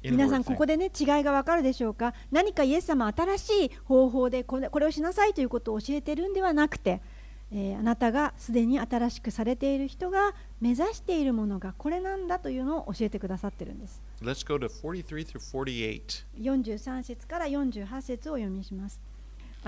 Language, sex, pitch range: Japanese, female, 205-285 Hz